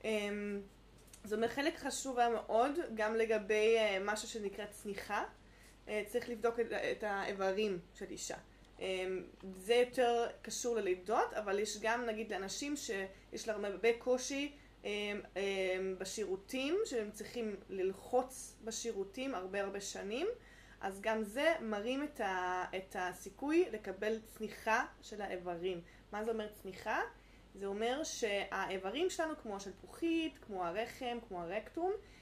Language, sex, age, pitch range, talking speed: Hebrew, female, 20-39, 195-250 Hz, 130 wpm